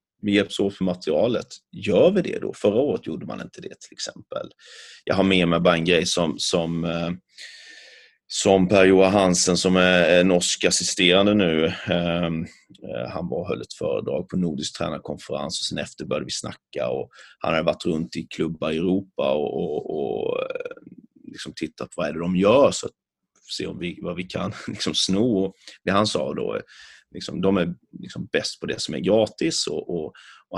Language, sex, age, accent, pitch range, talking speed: Swedish, male, 30-49, native, 90-105 Hz, 190 wpm